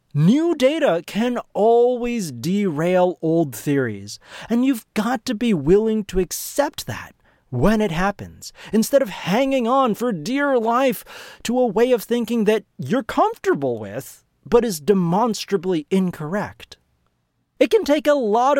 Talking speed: 140 wpm